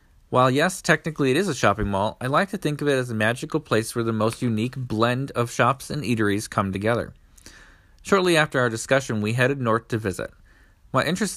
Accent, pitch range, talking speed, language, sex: American, 105-135 Hz, 210 wpm, English, male